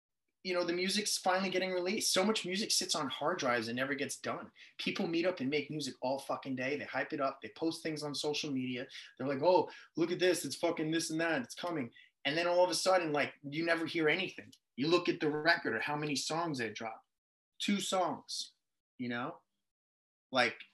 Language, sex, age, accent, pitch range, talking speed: English, male, 20-39, American, 125-165 Hz, 225 wpm